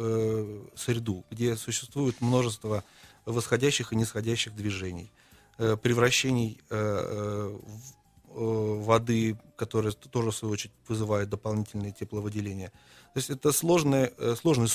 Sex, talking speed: male, 95 wpm